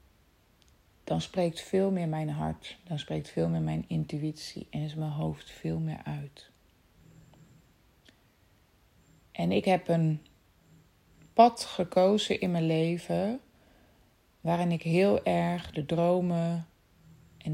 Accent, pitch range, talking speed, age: Dutch, 150-185 Hz, 120 wpm, 30-49